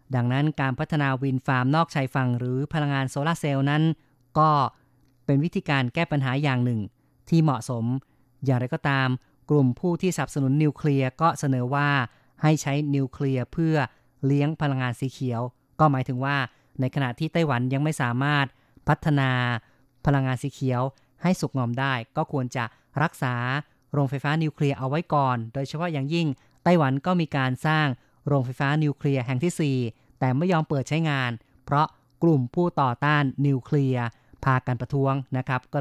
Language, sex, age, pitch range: Thai, female, 30-49, 130-150 Hz